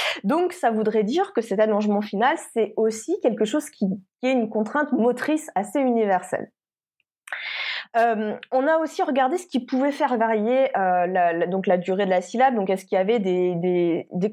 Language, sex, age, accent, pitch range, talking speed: French, female, 20-39, French, 200-270 Hz, 180 wpm